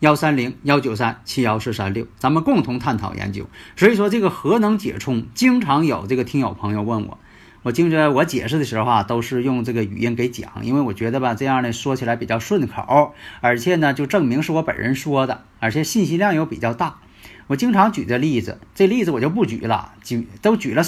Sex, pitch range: male, 105-165 Hz